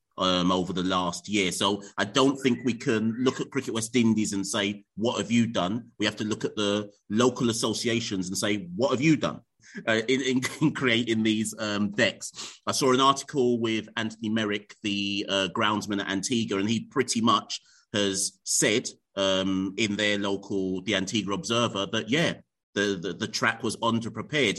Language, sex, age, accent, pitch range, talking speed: English, male, 30-49, British, 100-120 Hz, 190 wpm